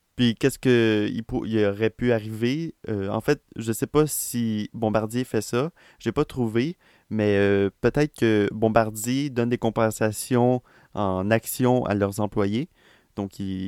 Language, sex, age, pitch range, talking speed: French, male, 20-39, 105-125 Hz, 160 wpm